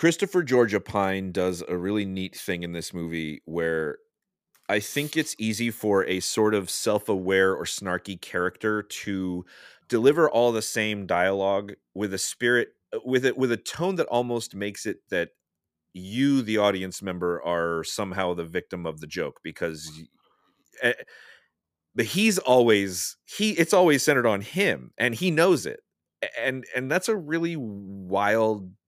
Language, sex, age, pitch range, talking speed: English, male, 30-49, 90-120 Hz, 160 wpm